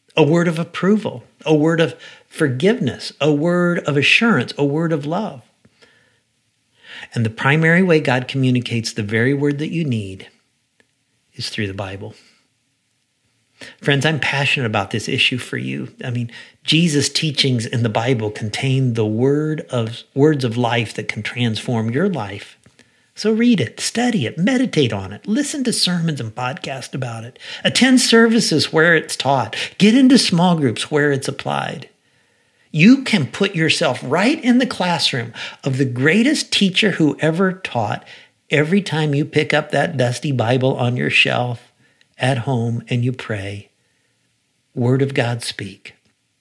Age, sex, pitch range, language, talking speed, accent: 50-69, male, 120-165 Hz, English, 155 wpm, American